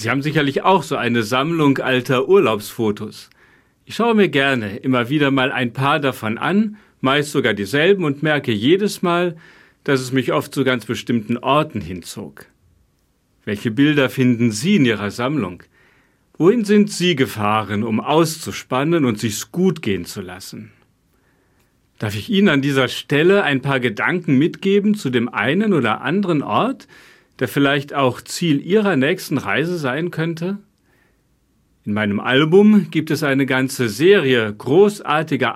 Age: 40-59